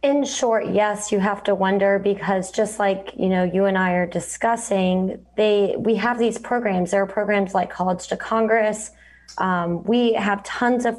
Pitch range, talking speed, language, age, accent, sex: 190-225 Hz, 185 wpm, English, 20-39, American, female